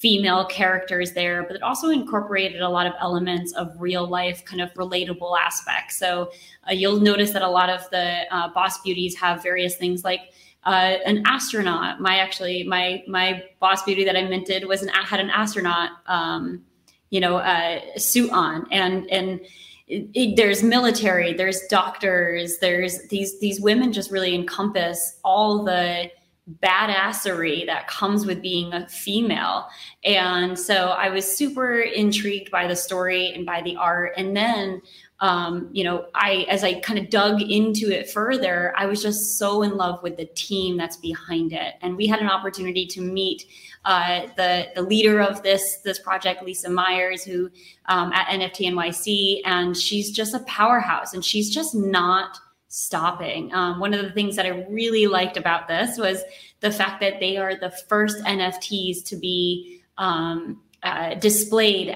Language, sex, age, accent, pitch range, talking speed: English, female, 20-39, American, 180-200 Hz, 170 wpm